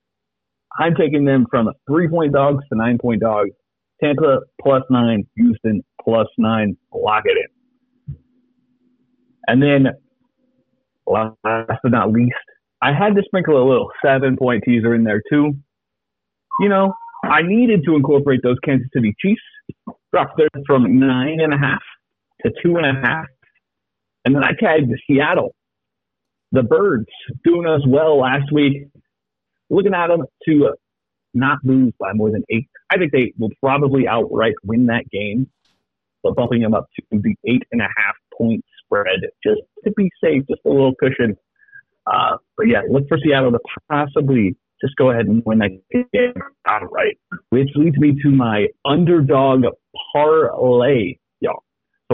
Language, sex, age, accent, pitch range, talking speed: English, male, 40-59, American, 125-195 Hz, 140 wpm